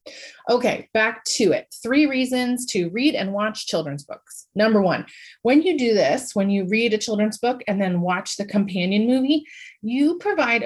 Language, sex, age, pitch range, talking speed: English, female, 30-49, 200-265 Hz, 180 wpm